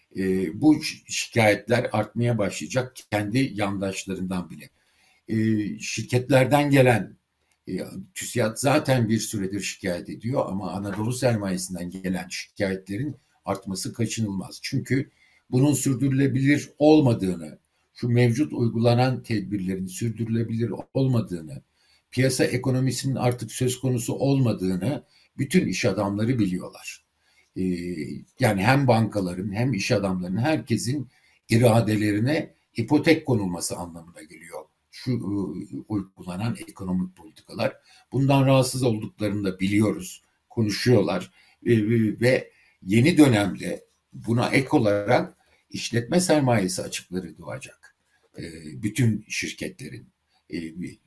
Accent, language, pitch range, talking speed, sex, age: native, Turkish, 100-130 Hz, 100 wpm, male, 60-79